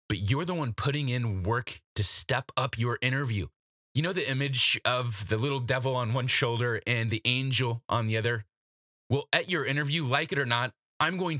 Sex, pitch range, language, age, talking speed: male, 105-135 Hz, English, 20-39, 205 wpm